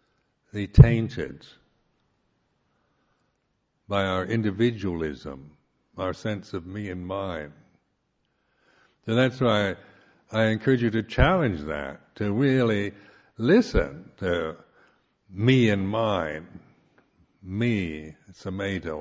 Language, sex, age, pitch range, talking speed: English, male, 60-79, 95-115 Hz, 95 wpm